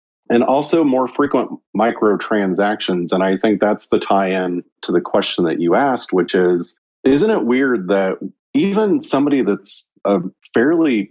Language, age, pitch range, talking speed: English, 40-59, 95-110 Hz, 150 wpm